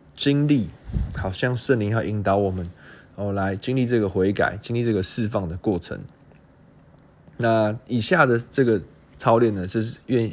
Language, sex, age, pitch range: Chinese, male, 20-39, 95-115 Hz